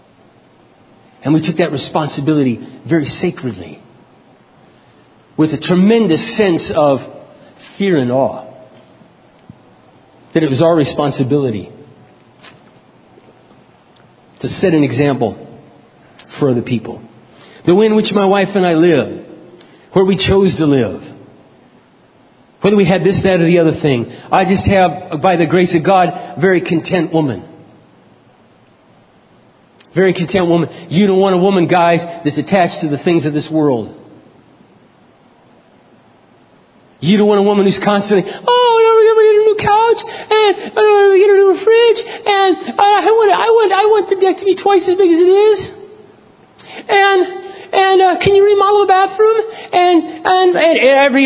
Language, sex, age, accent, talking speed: English, male, 40-59, American, 155 wpm